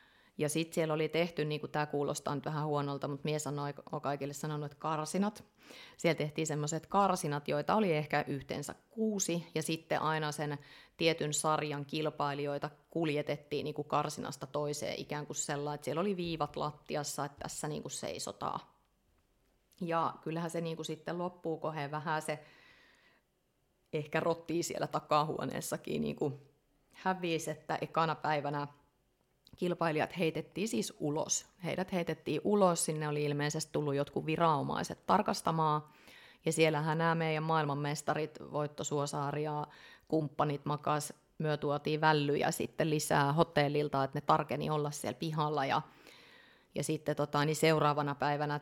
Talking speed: 130 wpm